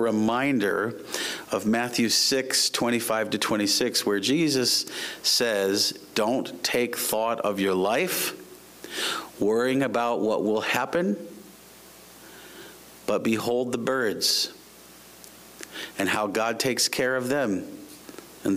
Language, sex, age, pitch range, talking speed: English, male, 40-59, 105-125 Hz, 105 wpm